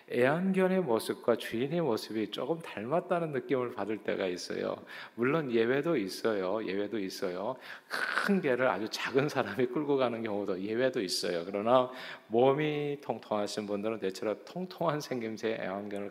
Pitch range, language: 105-135 Hz, Korean